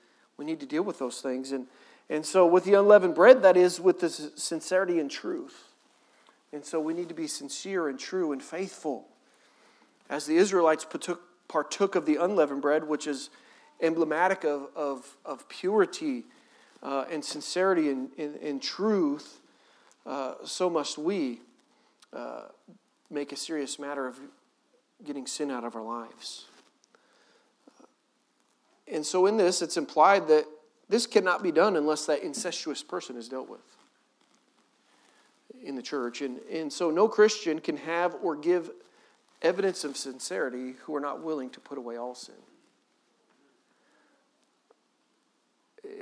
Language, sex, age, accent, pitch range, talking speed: English, male, 40-59, American, 140-185 Hz, 145 wpm